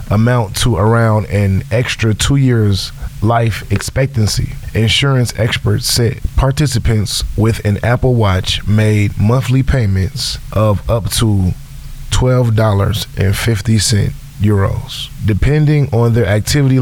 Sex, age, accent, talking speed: male, 20-39, American, 105 wpm